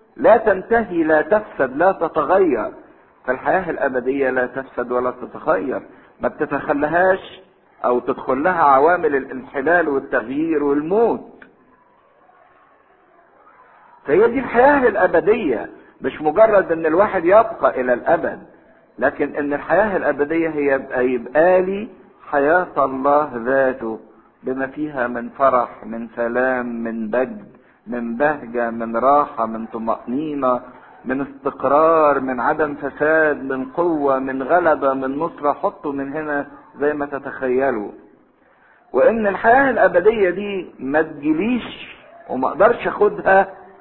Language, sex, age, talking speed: English, male, 50-69, 110 wpm